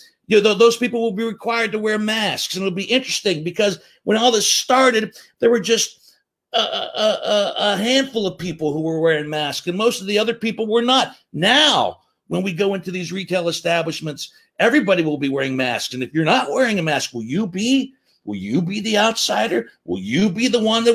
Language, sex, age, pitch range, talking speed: English, male, 50-69, 135-210 Hz, 215 wpm